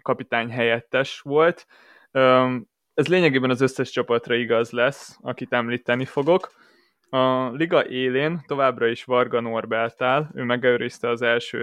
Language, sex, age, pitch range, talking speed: Hungarian, male, 20-39, 120-145 Hz, 125 wpm